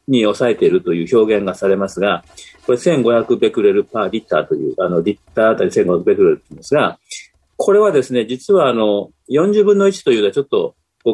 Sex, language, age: male, Japanese, 40-59